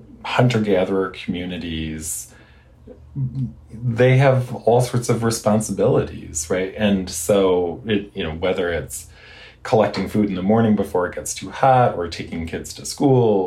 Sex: male